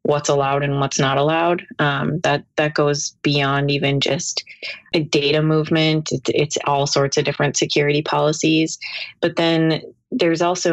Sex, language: female, English